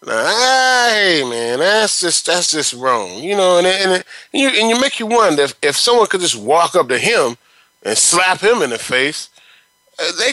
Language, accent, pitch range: English, American, 145-230 Hz